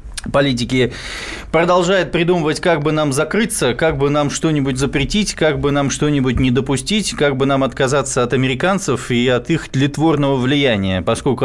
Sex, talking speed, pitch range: male, 155 wpm, 125-155 Hz